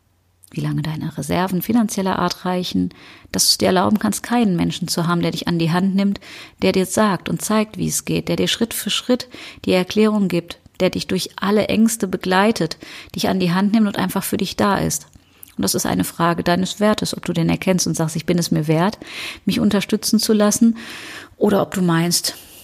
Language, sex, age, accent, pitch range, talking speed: German, female, 30-49, German, 165-195 Hz, 215 wpm